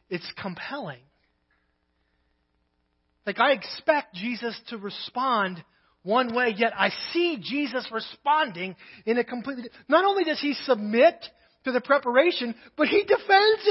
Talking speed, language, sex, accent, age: 125 wpm, English, male, American, 30-49